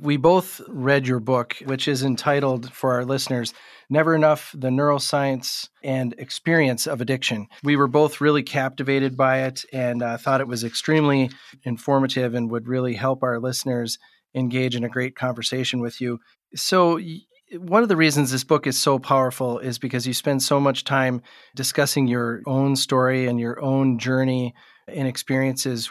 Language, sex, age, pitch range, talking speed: English, male, 40-59, 130-145 Hz, 170 wpm